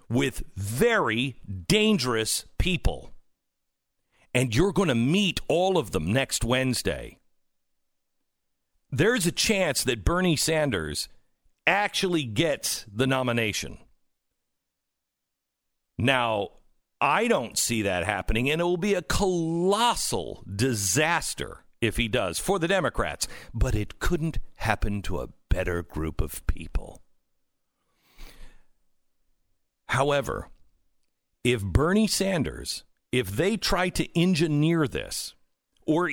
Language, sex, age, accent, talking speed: English, male, 50-69, American, 105 wpm